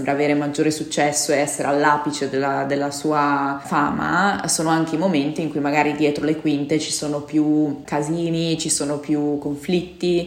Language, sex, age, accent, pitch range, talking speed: Italian, female, 20-39, native, 145-160 Hz, 165 wpm